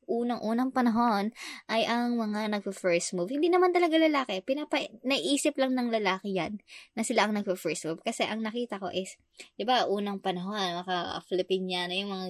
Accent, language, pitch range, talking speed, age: native, Filipino, 195-275 Hz, 175 wpm, 20-39